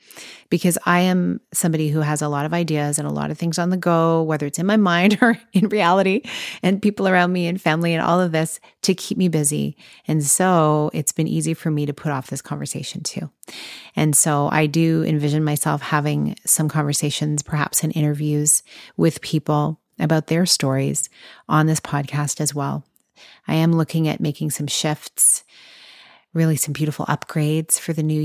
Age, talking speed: 30-49, 190 wpm